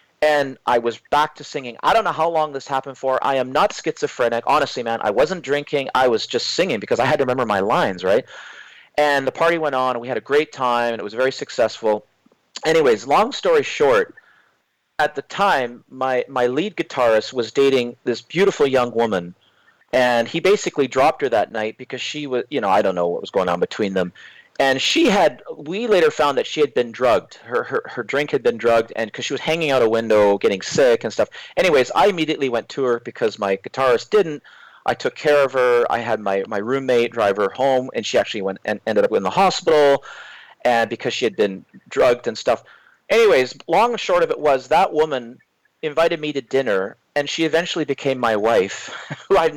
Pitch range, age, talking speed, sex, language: 120-170 Hz, 40-59, 220 wpm, male, English